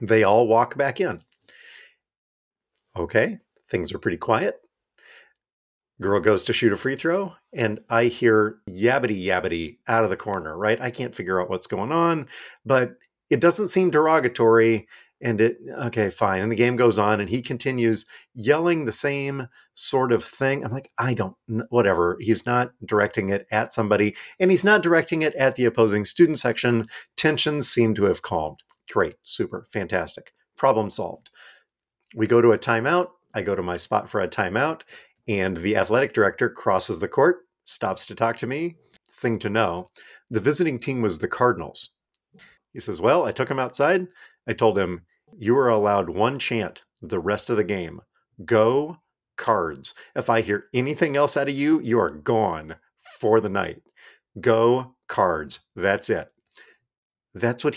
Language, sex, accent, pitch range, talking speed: English, male, American, 110-145 Hz, 170 wpm